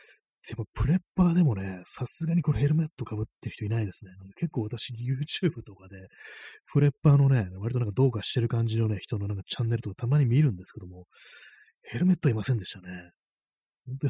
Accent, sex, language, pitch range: native, male, Japanese, 100-145 Hz